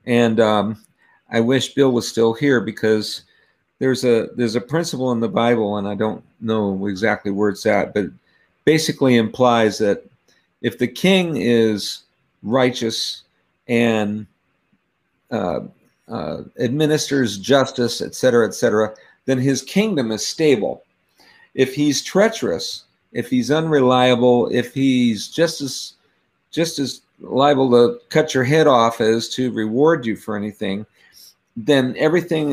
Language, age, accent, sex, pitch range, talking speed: English, 50-69, American, male, 110-145 Hz, 140 wpm